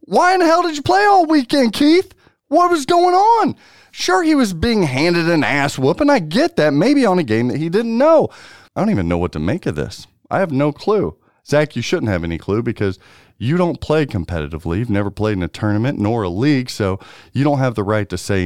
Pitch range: 100-160 Hz